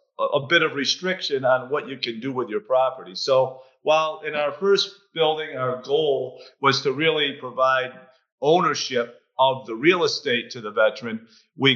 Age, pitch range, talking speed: 50-69, 125-160 Hz, 170 wpm